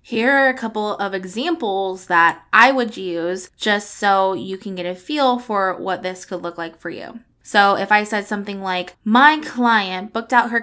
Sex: female